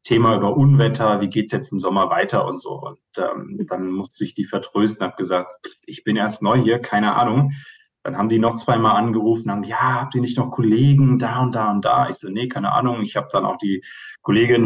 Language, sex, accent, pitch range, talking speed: German, male, German, 105-135 Hz, 235 wpm